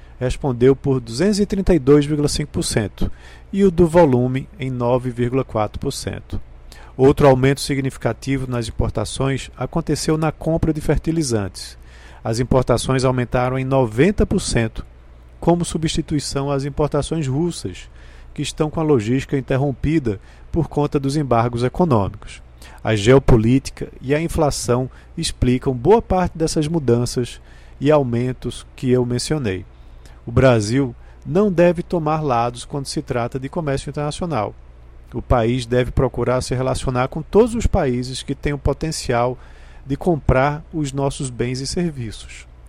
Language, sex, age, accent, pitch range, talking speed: Portuguese, male, 40-59, Brazilian, 115-150 Hz, 125 wpm